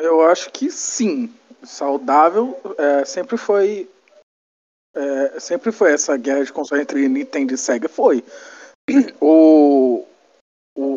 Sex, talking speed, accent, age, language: male, 120 wpm, Brazilian, 40-59, Portuguese